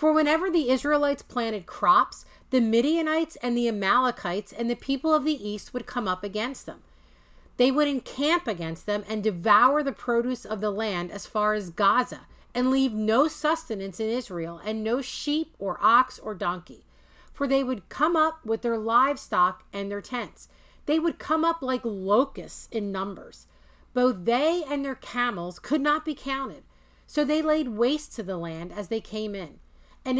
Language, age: English, 40-59